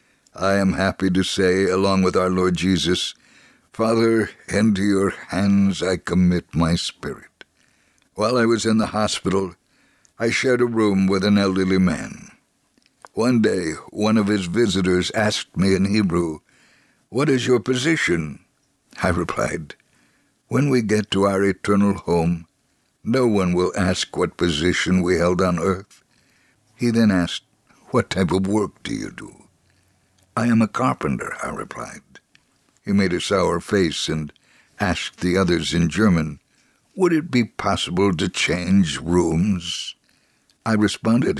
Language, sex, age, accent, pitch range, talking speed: English, male, 60-79, American, 90-110 Hz, 145 wpm